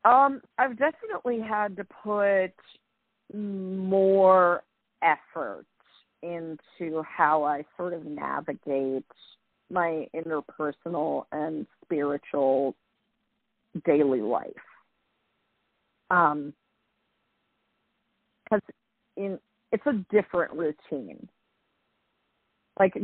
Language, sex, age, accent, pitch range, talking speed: English, female, 40-59, American, 165-205 Hz, 70 wpm